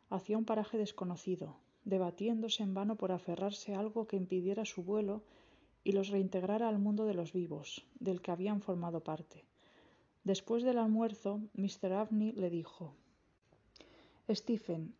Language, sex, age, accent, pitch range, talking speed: Spanish, female, 20-39, Spanish, 185-220 Hz, 145 wpm